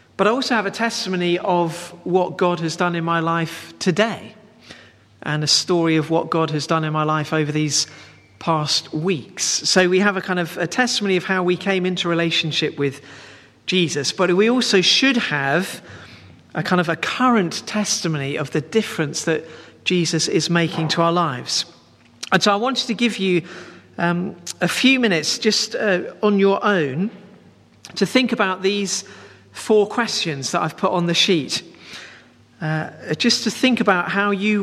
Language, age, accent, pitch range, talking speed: English, 40-59, British, 160-215 Hz, 175 wpm